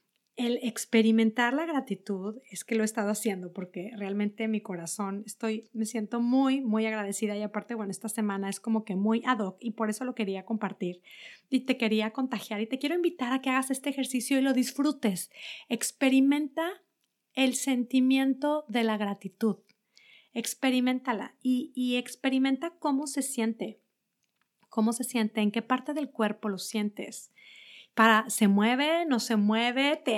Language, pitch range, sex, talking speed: Spanish, 210-255 Hz, female, 165 wpm